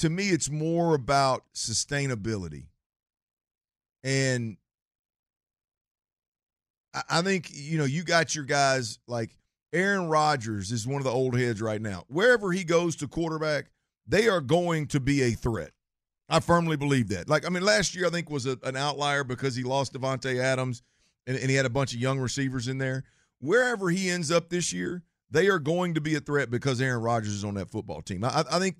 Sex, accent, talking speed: male, American, 190 wpm